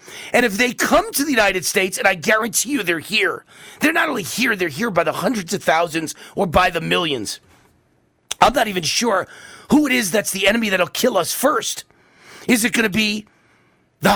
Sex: male